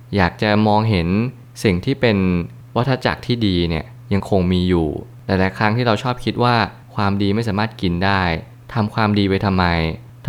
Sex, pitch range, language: male, 90-115 Hz, Thai